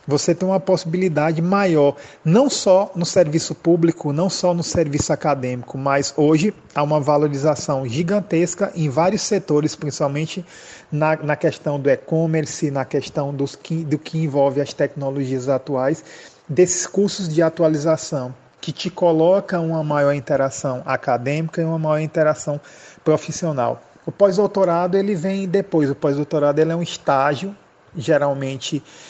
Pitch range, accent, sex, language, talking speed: 140-180 Hz, Brazilian, male, Portuguese, 130 wpm